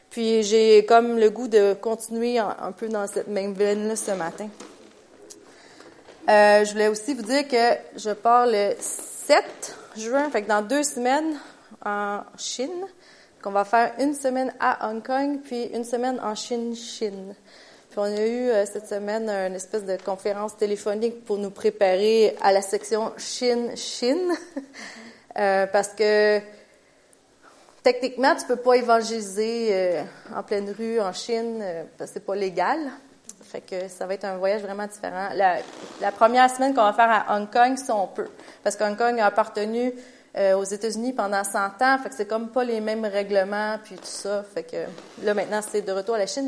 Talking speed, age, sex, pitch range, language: 180 wpm, 30-49, female, 205-240 Hz, French